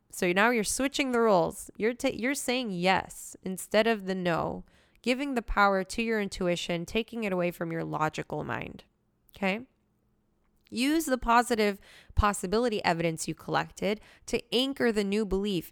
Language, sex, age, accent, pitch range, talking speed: English, female, 20-39, American, 185-240 Hz, 155 wpm